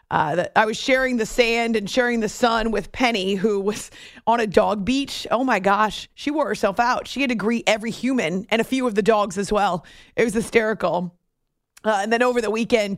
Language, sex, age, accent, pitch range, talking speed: English, female, 30-49, American, 205-245 Hz, 220 wpm